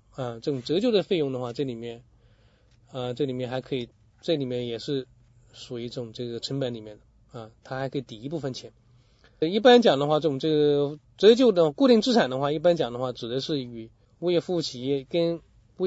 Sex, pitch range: male, 120-160 Hz